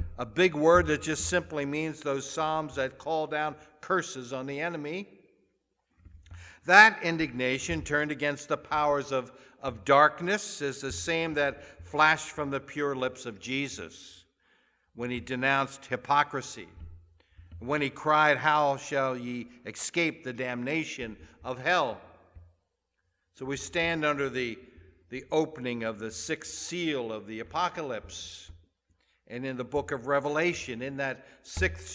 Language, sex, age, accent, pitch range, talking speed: English, male, 60-79, American, 120-150 Hz, 140 wpm